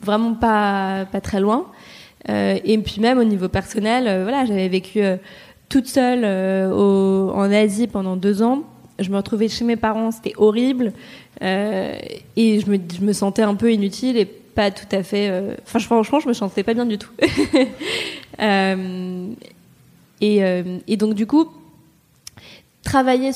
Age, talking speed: 20-39, 170 wpm